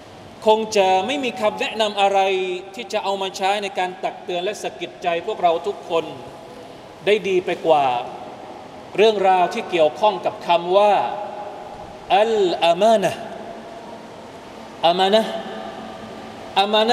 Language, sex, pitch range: Thai, male, 190-230 Hz